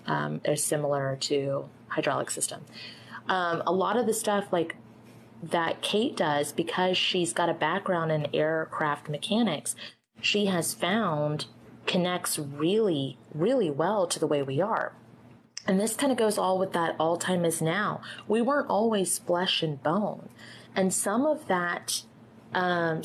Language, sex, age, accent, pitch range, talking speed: English, female, 30-49, American, 150-195 Hz, 155 wpm